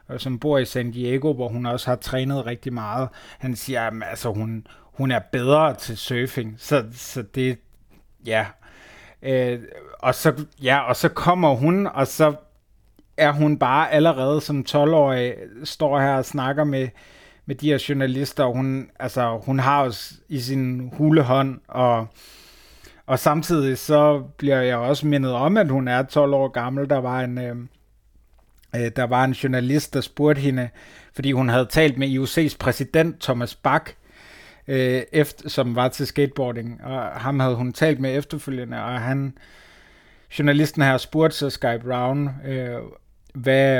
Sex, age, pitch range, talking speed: male, 30-49, 125-145 Hz, 150 wpm